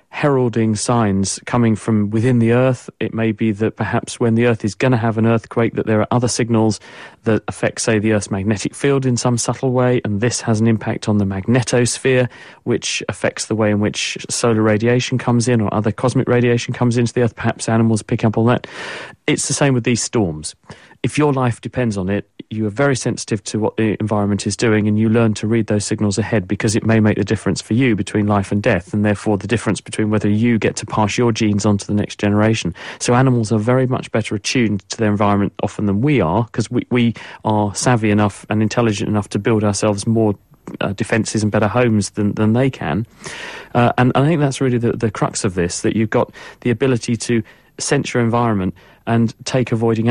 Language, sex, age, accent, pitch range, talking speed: English, male, 30-49, British, 105-120 Hz, 225 wpm